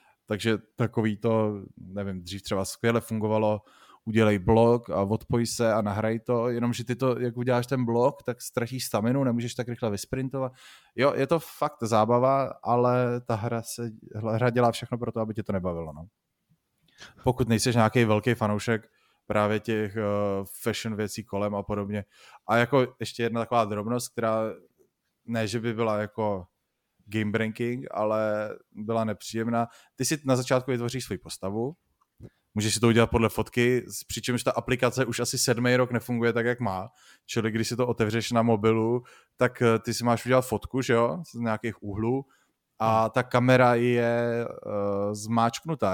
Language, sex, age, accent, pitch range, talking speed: Czech, male, 20-39, native, 110-125 Hz, 165 wpm